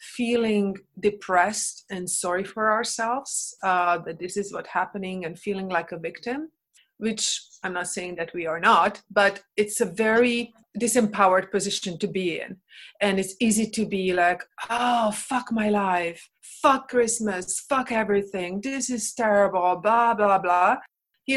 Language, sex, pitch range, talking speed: English, female, 190-230 Hz, 155 wpm